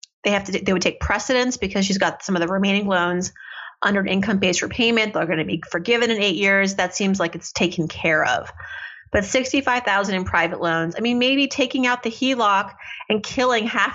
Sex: female